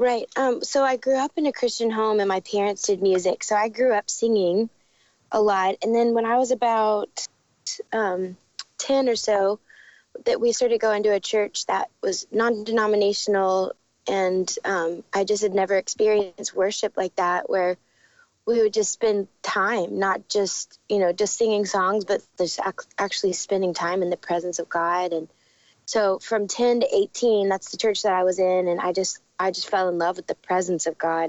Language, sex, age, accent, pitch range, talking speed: English, female, 20-39, American, 190-225 Hz, 195 wpm